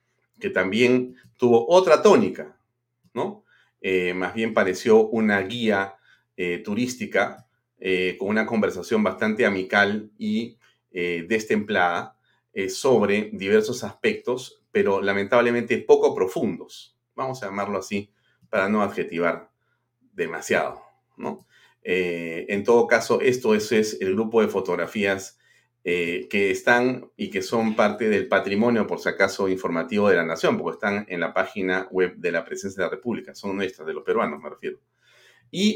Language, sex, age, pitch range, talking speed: Spanish, male, 40-59, 95-120 Hz, 145 wpm